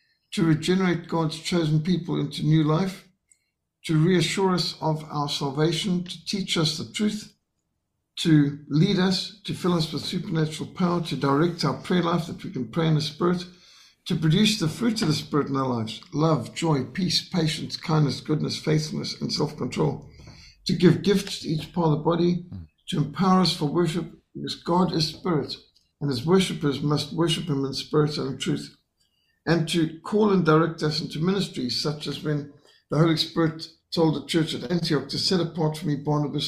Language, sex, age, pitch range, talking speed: English, male, 60-79, 150-175 Hz, 185 wpm